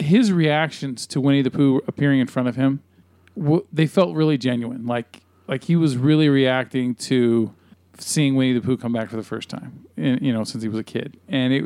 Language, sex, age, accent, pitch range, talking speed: English, male, 40-59, American, 125-160 Hz, 210 wpm